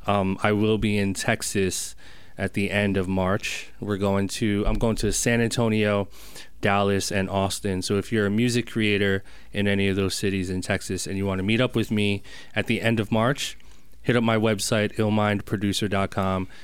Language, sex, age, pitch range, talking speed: English, male, 30-49, 95-110 Hz, 190 wpm